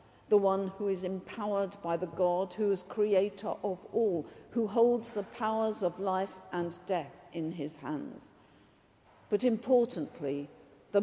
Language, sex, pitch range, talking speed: English, female, 160-195 Hz, 145 wpm